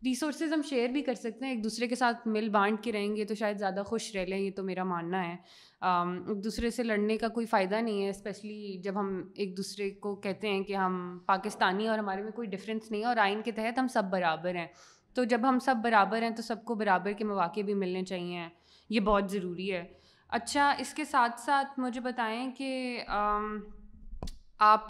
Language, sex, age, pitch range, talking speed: Urdu, female, 20-39, 195-230 Hz, 210 wpm